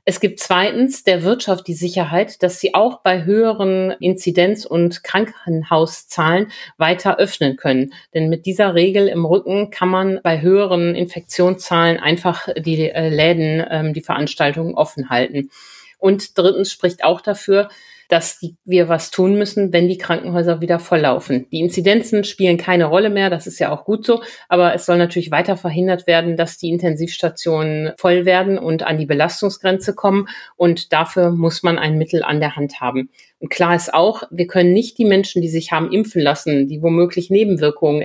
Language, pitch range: German, 160-190 Hz